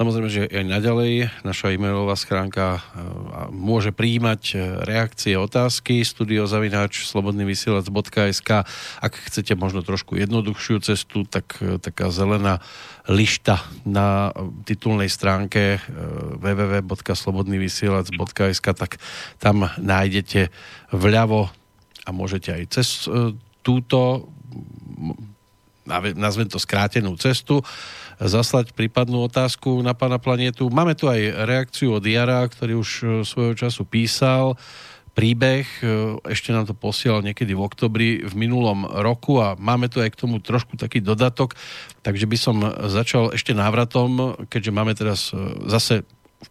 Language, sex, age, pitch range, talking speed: Slovak, male, 40-59, 100-120 Hz, 115 wpm